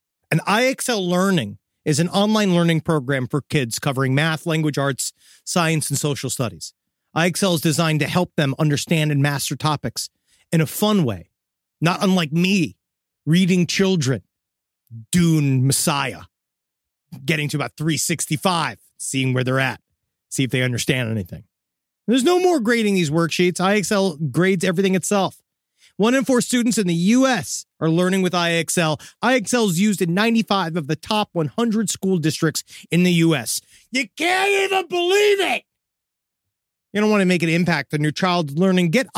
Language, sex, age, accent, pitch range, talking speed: English, male, 30-49, American, 145-210 Hz, 160 wpm